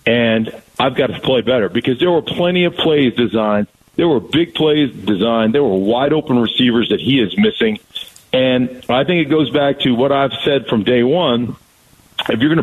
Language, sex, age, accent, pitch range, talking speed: English, male, 50-69, American, 120-160 Hz, 205 wpm